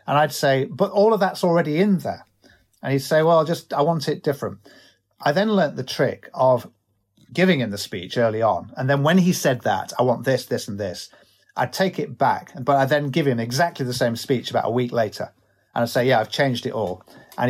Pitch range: 120-155 Hz